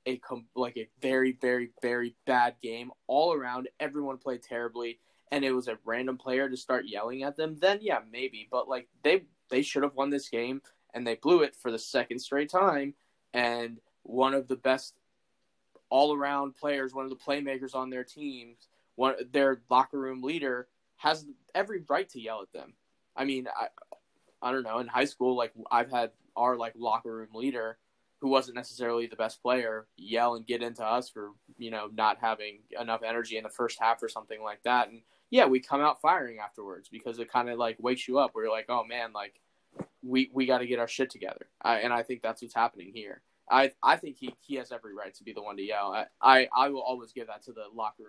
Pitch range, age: 115-135 Hz, 10-29